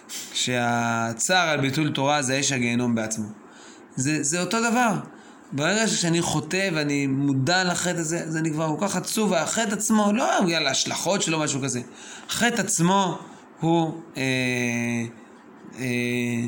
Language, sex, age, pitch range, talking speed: Hebrew, male, 20-39, 125-160 Hz, 140 wpm